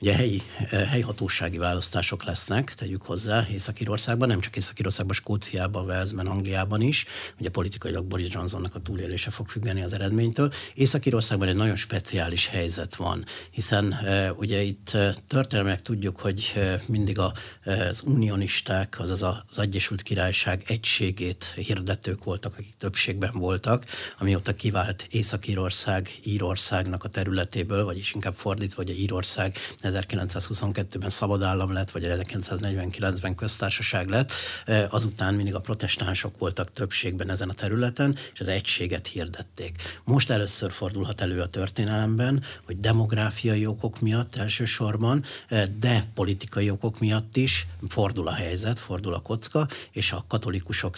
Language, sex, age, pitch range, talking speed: Hungarian, male, 60-79, 95-110 Hz, 130 wpm